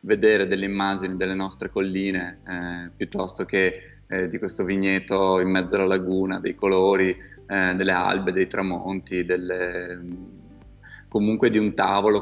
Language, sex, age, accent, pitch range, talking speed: Italian, male, 20-39, native, 90-100 Hz, 140 wpm